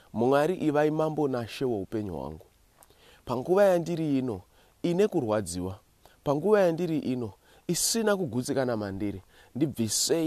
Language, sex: English, male